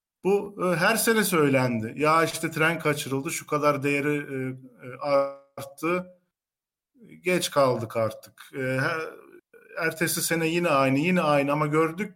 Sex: male